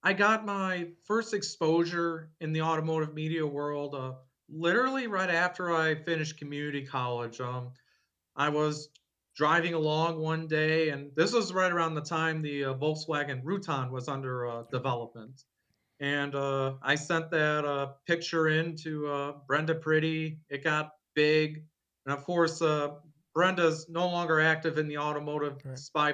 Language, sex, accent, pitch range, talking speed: English, male, American, 145-170 Hz, 155 wpm